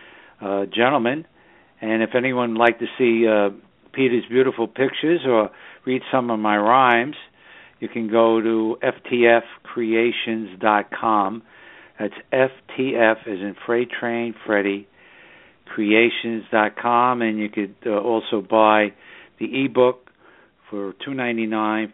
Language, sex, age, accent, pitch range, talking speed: English, male, 60-79, American, 105-120 Hz, 115 wpm